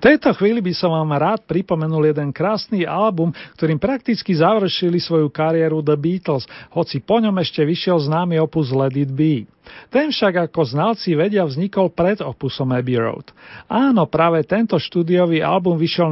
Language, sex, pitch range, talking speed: Slovak, male, 150-185 Hz, 165 wpm